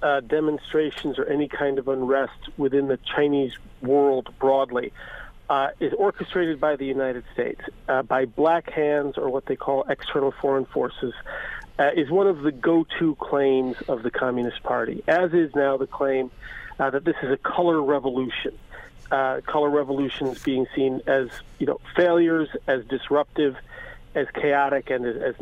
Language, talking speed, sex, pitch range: English, 160 wpm, male, 135-170 Hz